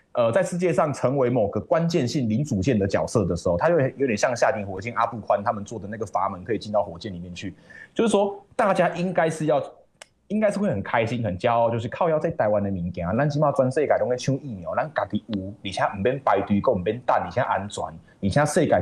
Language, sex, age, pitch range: Chinese, male, 20-39, 110-155 Hz